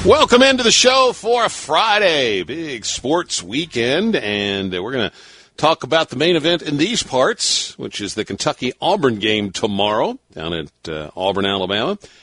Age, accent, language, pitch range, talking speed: 50-69, American, English, 90-150 Hz, 160 wpm